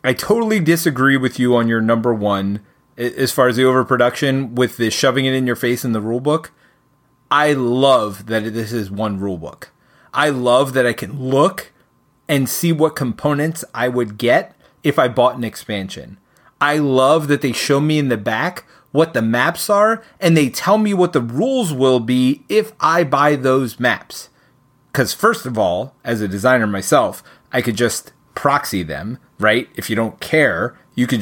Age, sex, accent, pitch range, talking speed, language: 30-49, male, American, 120-145 Hz, 185 wpm, English